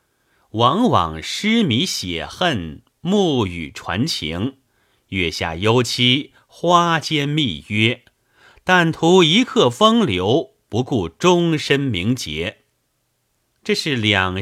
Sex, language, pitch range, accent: male, Chinese, 100-150 Hz, native